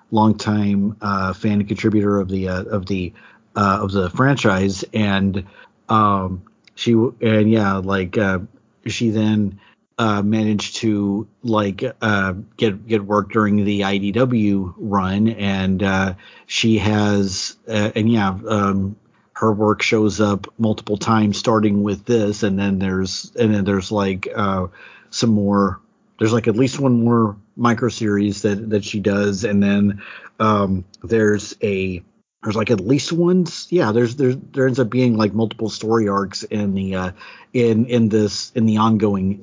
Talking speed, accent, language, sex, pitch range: 160 wpm, American, English, male, 100-110 Hz